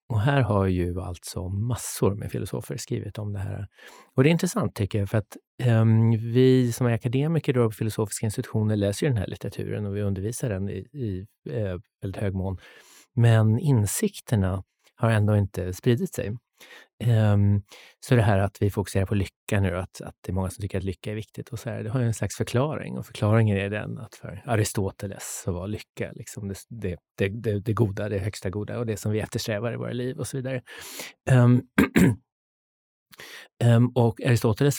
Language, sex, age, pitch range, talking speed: Swedish, male, 30-49, 95-120 Hz, 200 wpm